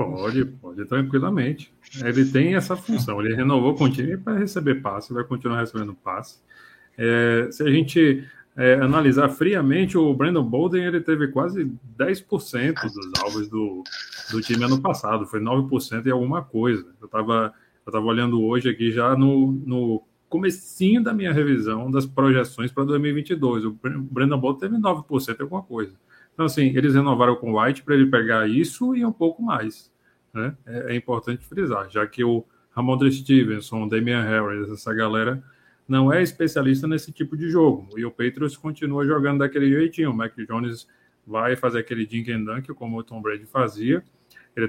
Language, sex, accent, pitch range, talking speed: Portuguese, male, Brazilian, 115-145 Hz, 170 wpm